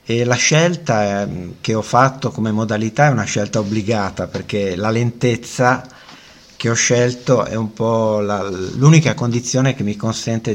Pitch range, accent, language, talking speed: 100-125 Hz, native, Italian, 140 wpm